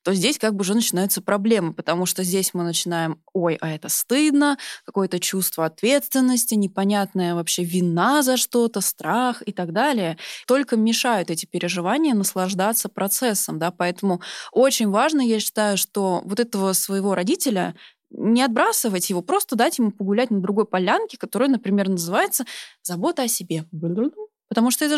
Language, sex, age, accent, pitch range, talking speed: Russian, female, 20-39, native, 185-230 Hz, 160 wpm